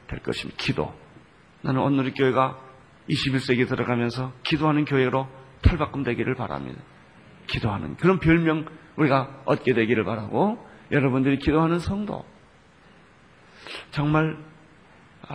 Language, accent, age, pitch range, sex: Korean, native, 40-59, 130-180 Hz, male